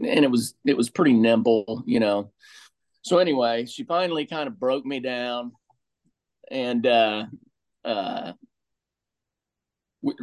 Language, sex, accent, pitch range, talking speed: English, male, American, 105-140 Hz, 115 wpm